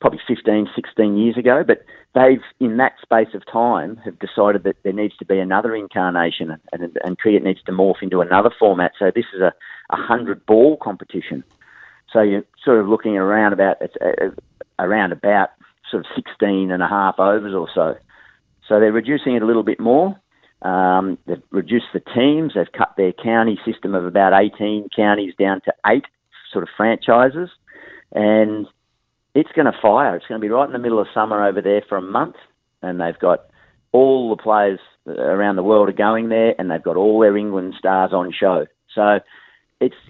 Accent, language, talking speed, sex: Australian, English, 190 wpm, male